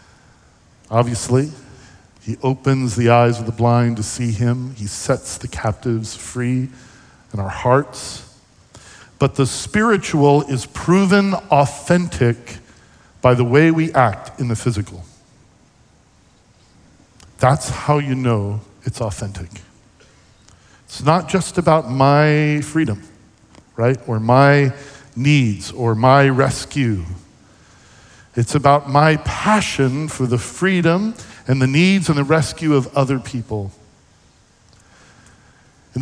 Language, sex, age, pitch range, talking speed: English, male, 50-69, 110-150 Hz, 115 wpm